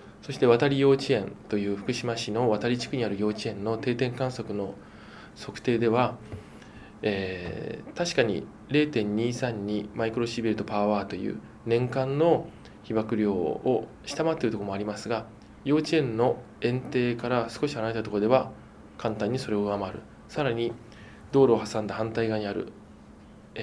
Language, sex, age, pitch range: Japanese, male, 20-39, 105-135 Hz